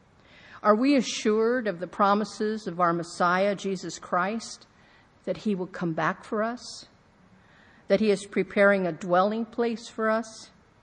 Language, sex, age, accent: English, female, 50-69, American